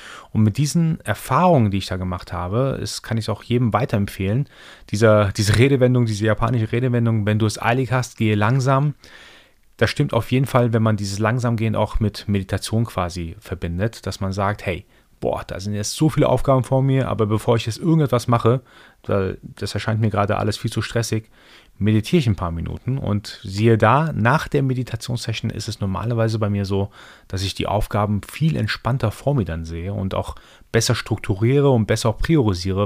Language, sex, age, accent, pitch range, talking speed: German, male, 30-49, German, 105-130 Hz, 185 wpm